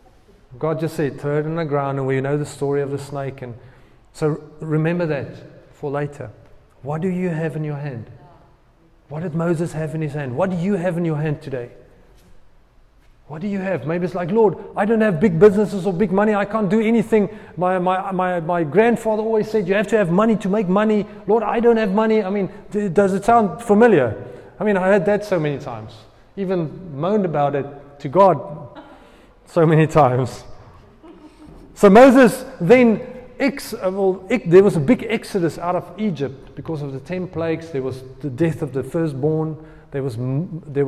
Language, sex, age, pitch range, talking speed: English, male, 30-49, 140-195 Hz, 200 wpm